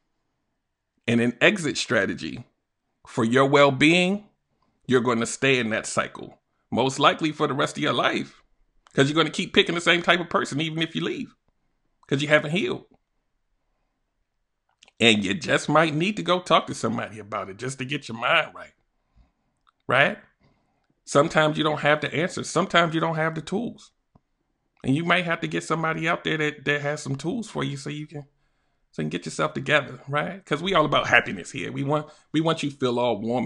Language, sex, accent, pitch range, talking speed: English, male, American, 125-165 Hz, 200 wpm